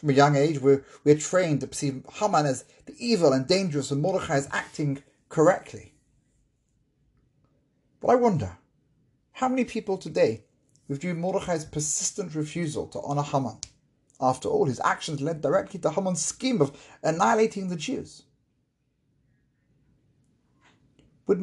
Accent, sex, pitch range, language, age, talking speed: British, male, 135-175 Hz, English, 30-49, 135 wpm